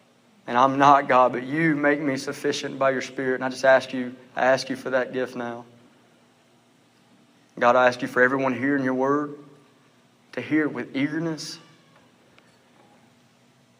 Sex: male